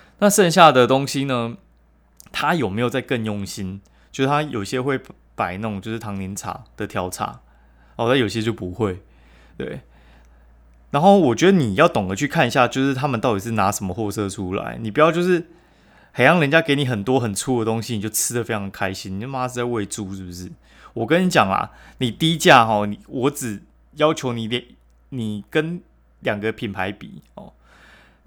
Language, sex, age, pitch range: Chinese, male, 20-39, 100-135 Hz